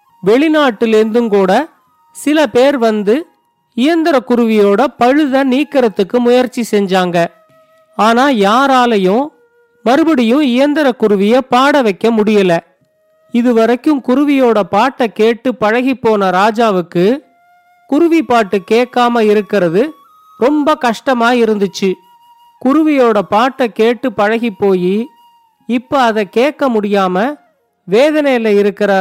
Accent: native